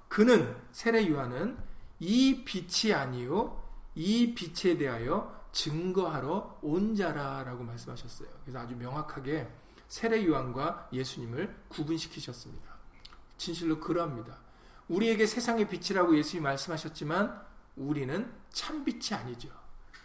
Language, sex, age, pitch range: Korean, male, 40-59, 160-240 Hz